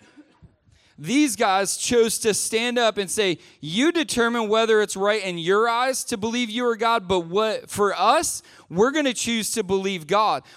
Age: 20-39